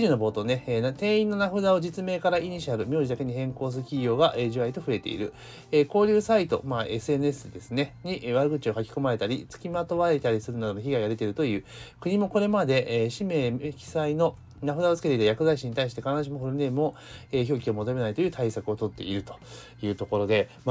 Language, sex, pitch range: Japanese, male, 110-160 Hz